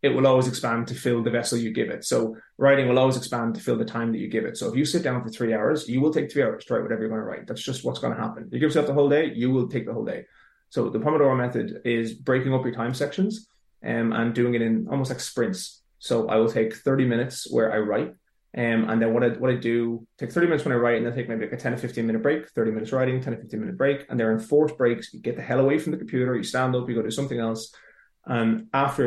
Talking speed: 300 wpm